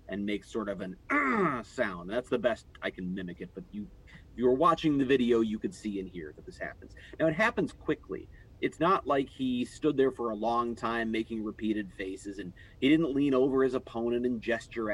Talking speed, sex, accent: 230 wpm, male, American